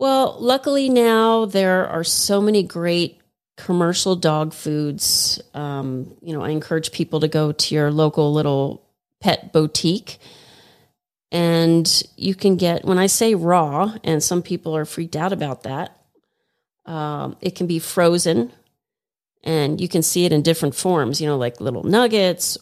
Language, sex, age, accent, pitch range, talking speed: English, female, 30-49, American, 155-185 Hz, 155 wpm